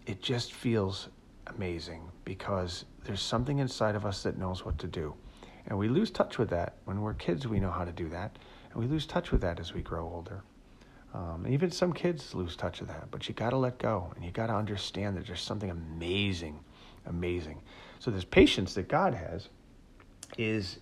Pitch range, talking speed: 95-120 Hz, 210 wpm